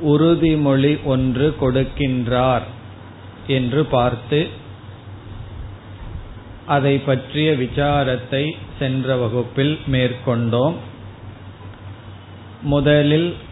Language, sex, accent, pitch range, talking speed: Tamil, male, native, 110-145 Hz, 55 wpm